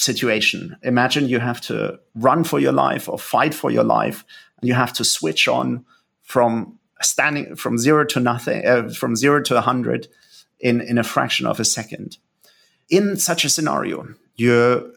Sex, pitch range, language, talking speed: male, 120-155 Hz, English, 170 wpm